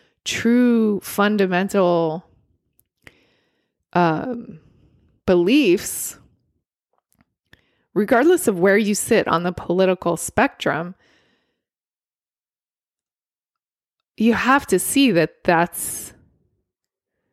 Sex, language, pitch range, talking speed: female, English, 175-215 Hz, 65 wpm